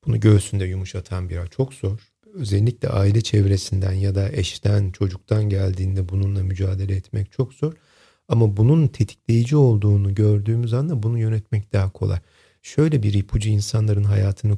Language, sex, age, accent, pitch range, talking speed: Turkish, male, 40-59, native, 95-120 Hz, 140 wpm